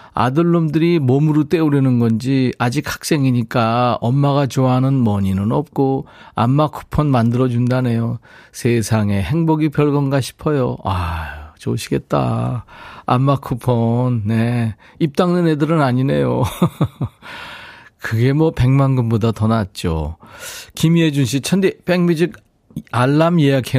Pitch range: 110-145 Hz